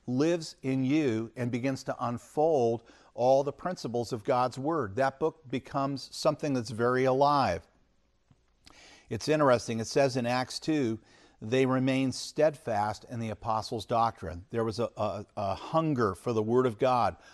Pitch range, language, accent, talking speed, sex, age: 110-140 Hz, English, American, 150 wpm, male, 50-69